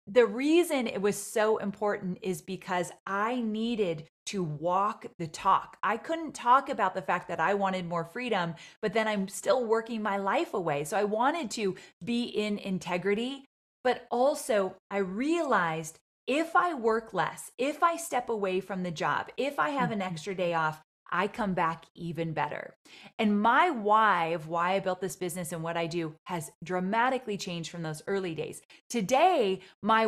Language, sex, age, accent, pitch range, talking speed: English, female, 30-49, American, 185-245 Hz, 180 wpm